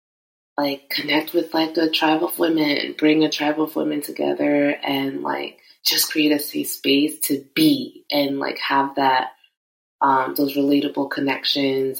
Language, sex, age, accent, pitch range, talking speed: English, female, 20-39, American, 135-150 Hz, 155 wpm